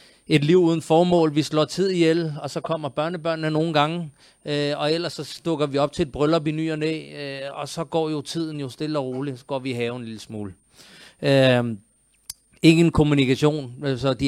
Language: Danish